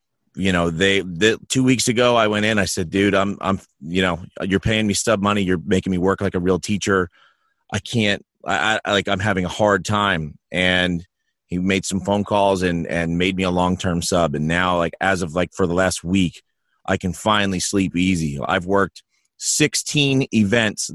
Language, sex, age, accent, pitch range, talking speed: English, male, 30-49, American, 90-115 Hz, 205 wpm